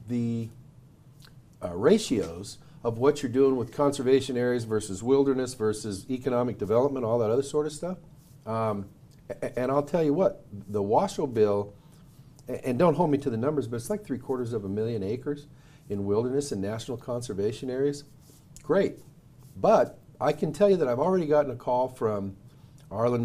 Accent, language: American, English